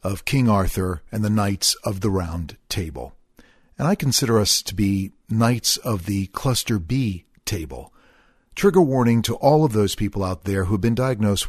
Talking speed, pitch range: 180 wpm, 95-135 Hz